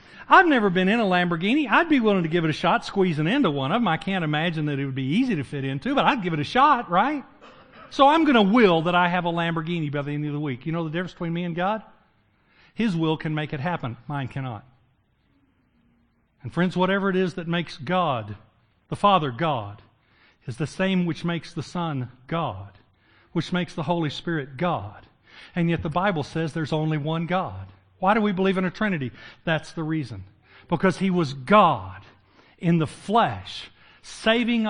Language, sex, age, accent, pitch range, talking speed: English, male, 50-69, American, 130-180 Hz, 210 wpm